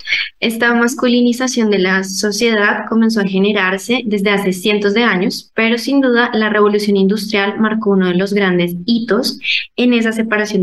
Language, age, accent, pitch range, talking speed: Spanish, 20-39, Colombian, 195-225 Hz, 160 wpm